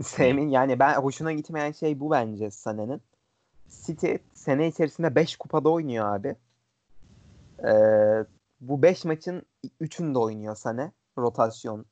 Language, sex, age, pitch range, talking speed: Turkish, male, 30-49, 110-150 Hz, 115 wpm